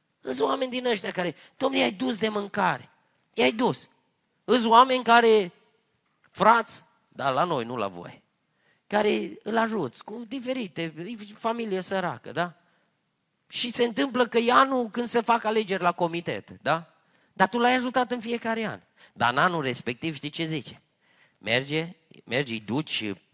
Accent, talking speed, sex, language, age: native, 155 wpm, male, Romanian, 30-49